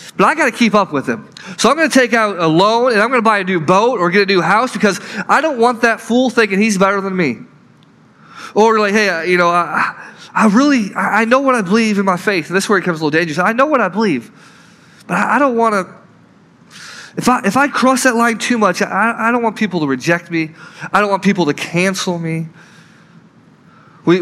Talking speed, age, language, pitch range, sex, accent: 255 wpm, 20-39, English, 175-215 Hz, male, American